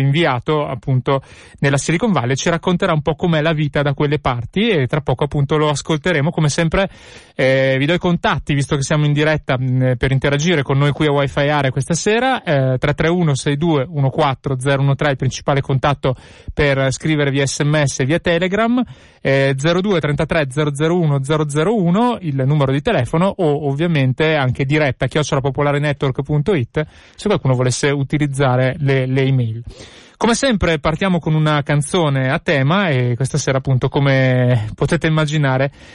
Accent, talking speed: native, 150 wpm